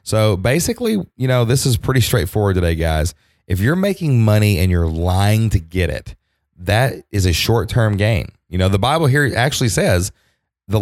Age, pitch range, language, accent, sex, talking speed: 30-49, 85-110 Hz, English, American, male, 190 wpm